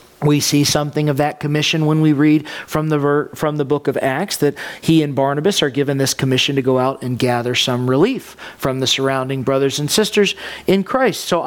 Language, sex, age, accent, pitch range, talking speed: English, male, 40-59, American, 170-250 Hz, 215 wpm